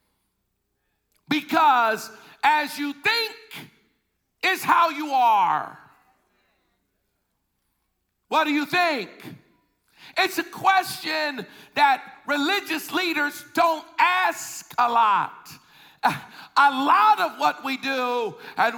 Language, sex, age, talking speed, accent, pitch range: English, male, 50-69, 95 wpm, American, 245-355 Hz